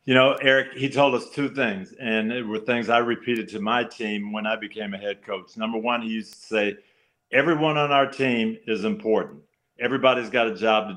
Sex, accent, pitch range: male, American, 110-130 Hz